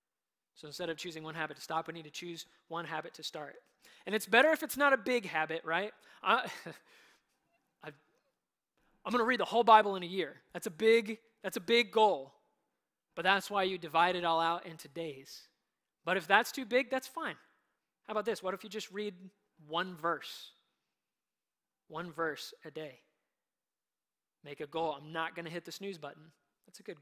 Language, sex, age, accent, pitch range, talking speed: English, male, 20-39, American, 160-200 Hz, 190 wpm